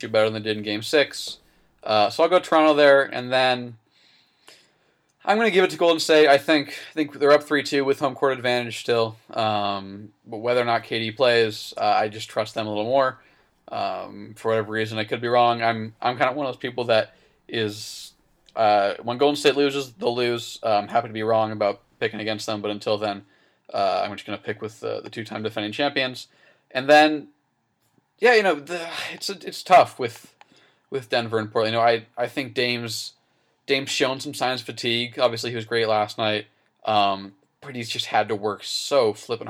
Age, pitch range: 20-39, 110-130 Hz